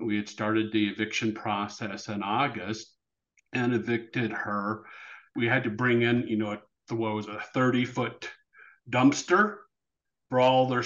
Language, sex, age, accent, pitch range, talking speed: English, male, 50-69, American, 110-125 Hz, 155 wpm